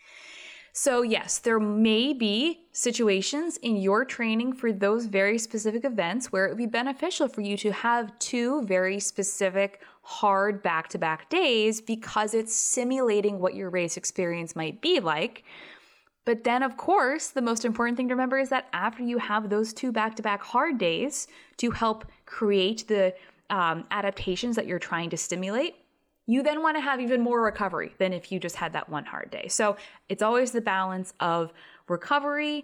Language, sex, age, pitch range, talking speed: English, female, 20-39, 195-270 Hz, 175 wpm